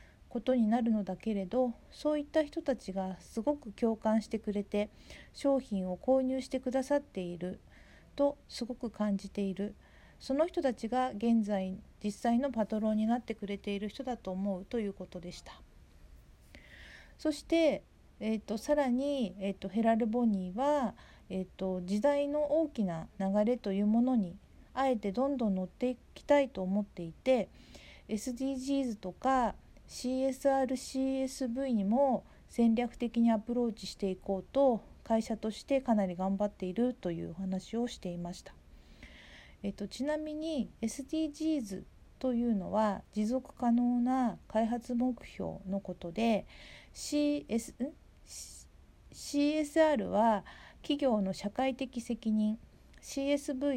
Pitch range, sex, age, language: 195-265 Hz, female, 50-69, Japanese